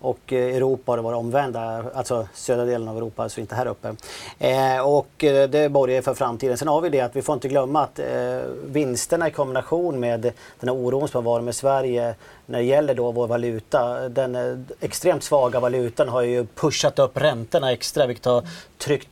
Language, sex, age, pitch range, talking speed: Swedish, male, 30-49, 120-130 Hz, 200 wpm